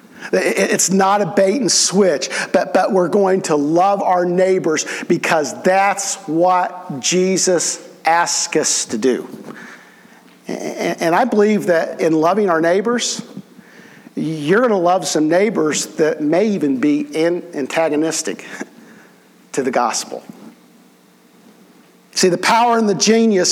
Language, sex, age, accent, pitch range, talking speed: English, male, 50-69, American, 165-210 Hz, 130 wpm